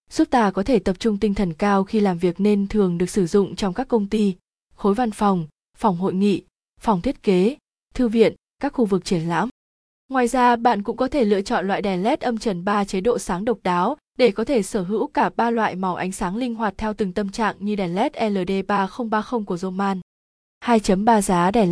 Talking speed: 225 wpm